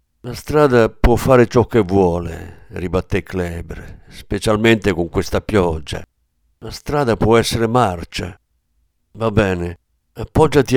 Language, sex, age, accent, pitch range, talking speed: Italian, male, 50-69, native, 85-125 Hz, 115 wpm